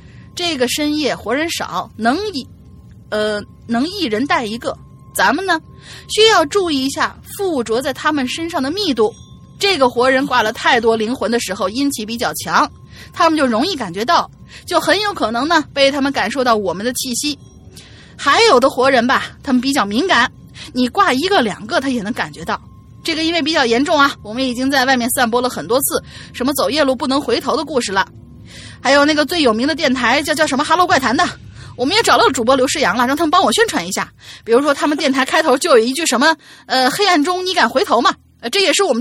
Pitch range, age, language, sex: 245-320 Hz, 30-49, Chinese, female